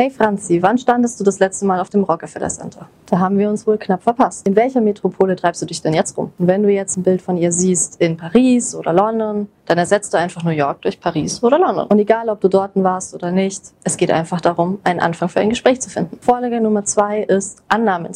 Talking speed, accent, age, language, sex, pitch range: 250 wpm, German, 30-49, German, female, 180-220 Hz